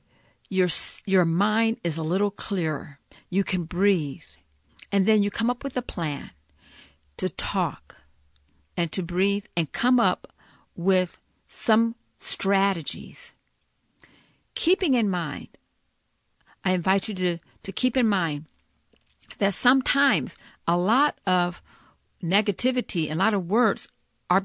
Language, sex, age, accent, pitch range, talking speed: English, female, 50-69, American, 165-220 Hz, 130 wpm